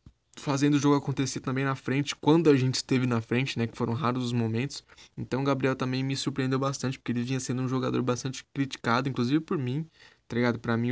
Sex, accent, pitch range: male, Brazilian, 120-145 Hz